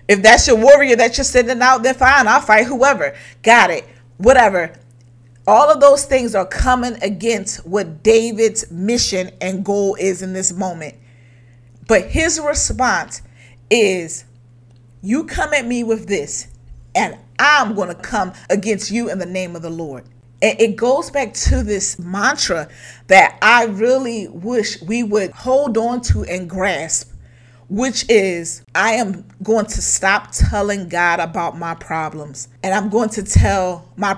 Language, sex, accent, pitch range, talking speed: English, female, American, 175-250 Hz, 160 wpm